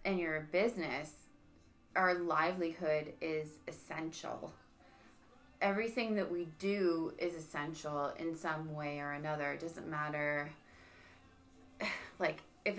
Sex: female